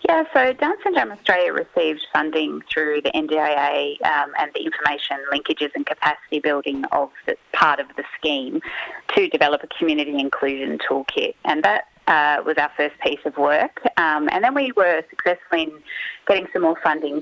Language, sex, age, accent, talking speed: English, female, 30-49, Australian, 165 wpm